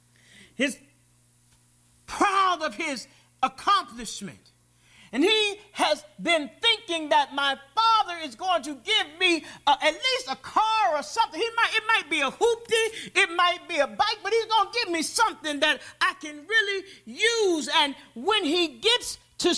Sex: male